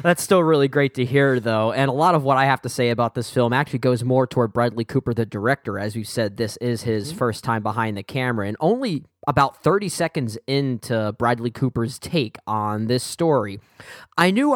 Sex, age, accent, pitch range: male, 10-29, American, 115-140 Hz